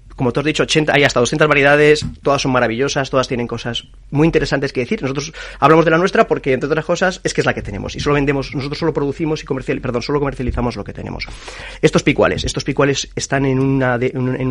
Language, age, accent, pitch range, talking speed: Spanish, 30-49, Spanish, 115-145 Hz, 235 wpm